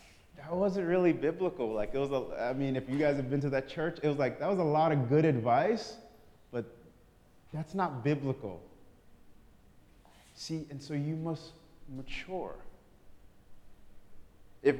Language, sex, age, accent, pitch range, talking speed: English, male, 30-49, American, 120-165 Hz, 160 wpm